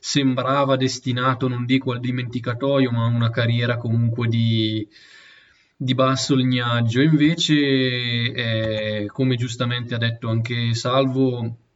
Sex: male